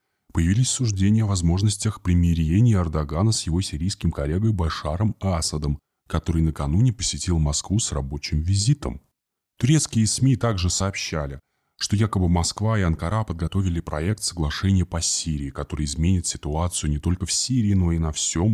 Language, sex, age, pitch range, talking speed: Russian, male, 20-39, 80-110 Hz, 140 wpm